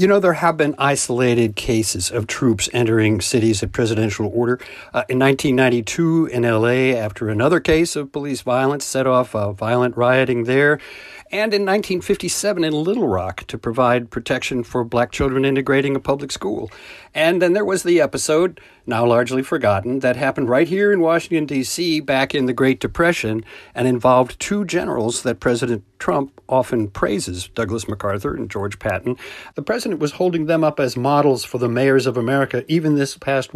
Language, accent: English, American